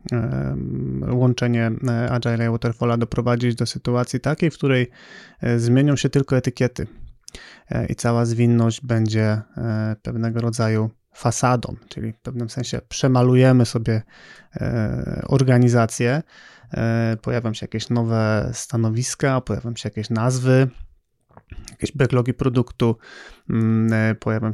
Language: Polish